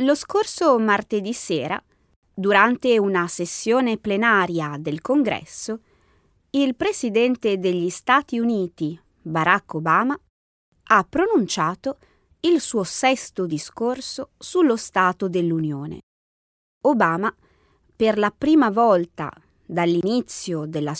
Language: Italian